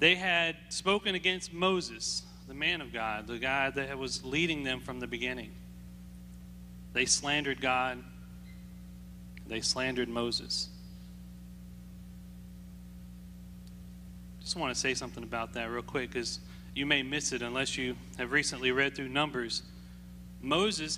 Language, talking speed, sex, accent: English, 130 wpm, male, American